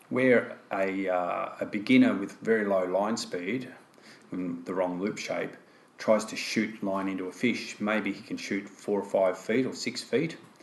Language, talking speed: English, 180 wpm